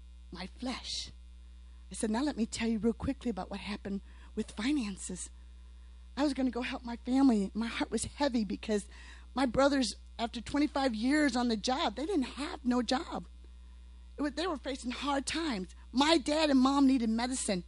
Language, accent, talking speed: English, American, 185 wpm